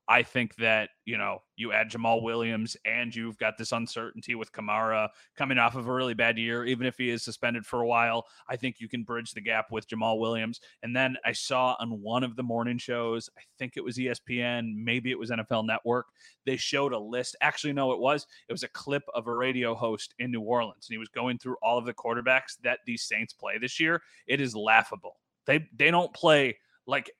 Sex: male